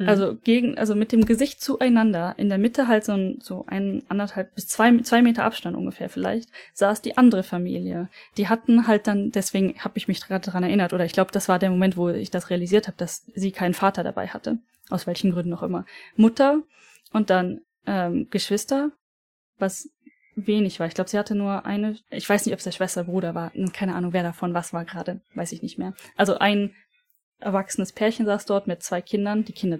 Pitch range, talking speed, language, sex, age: 185-235 Hz, 215 wpm, German, female, 10-29